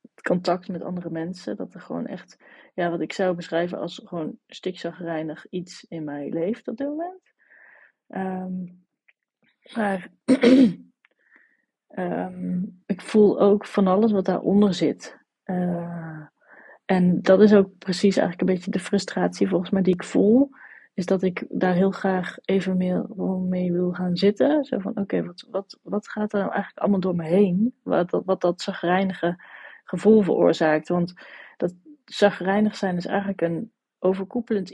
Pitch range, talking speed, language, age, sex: 175-205 Hz, 160 wpm, Dutch, 30-49, female